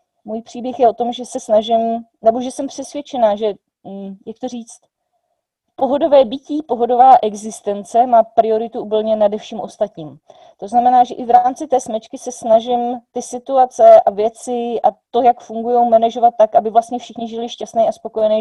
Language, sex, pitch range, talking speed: Czech, female, 225-280 Hz, 175 wpm